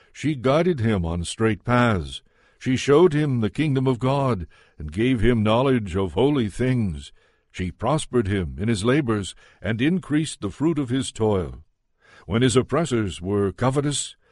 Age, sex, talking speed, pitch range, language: 60-79, male, 160 wpm, 105-135 Hz, English